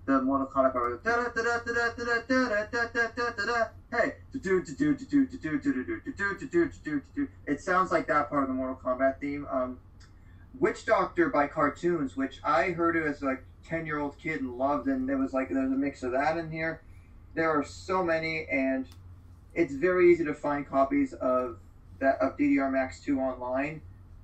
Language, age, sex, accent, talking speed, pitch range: English, 30-49, male, American, 160 wpm, 130-185 Hz